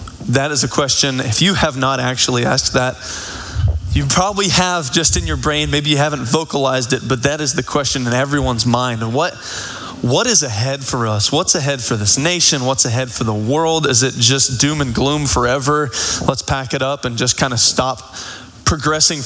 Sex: male